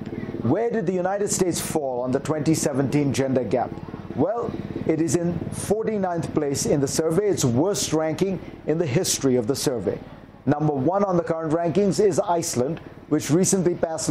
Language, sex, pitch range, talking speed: English, male, 145-185 Hz, 170 wpm